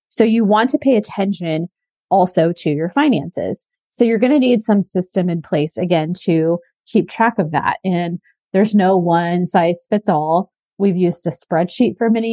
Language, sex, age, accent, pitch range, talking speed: English, female, 30-49, American, 170-205 Hz, 185 wpm